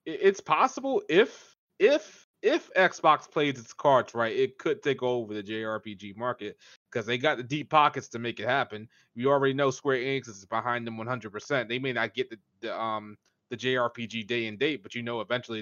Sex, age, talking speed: male, 20-39, 205 wpm